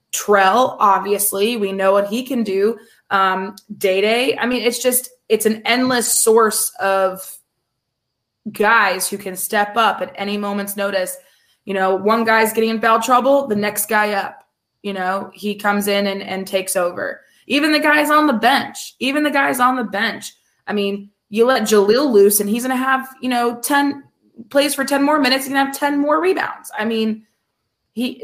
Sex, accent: female, American